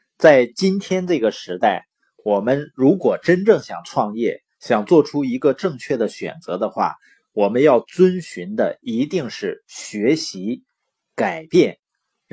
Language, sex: Chinese, male